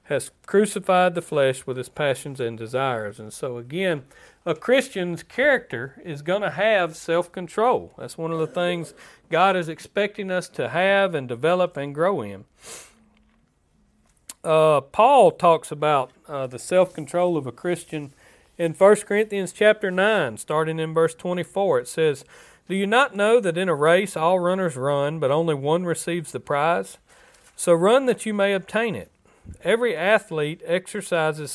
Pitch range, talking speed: 150-200 Hz, 160 wpm